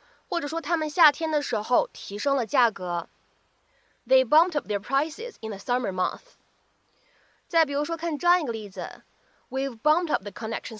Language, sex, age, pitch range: Chinese, female, 20-39, 220-310 Hz